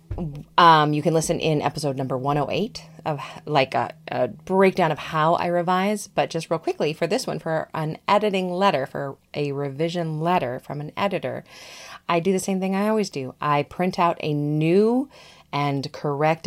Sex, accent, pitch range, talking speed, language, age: female, American, 140-175 Hz, 180 wpm, English, 30-49